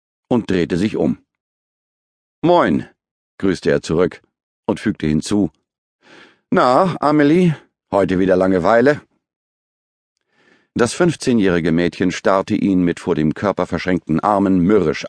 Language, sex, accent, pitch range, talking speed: German, male, German, 85-115 Hz, 110 wpm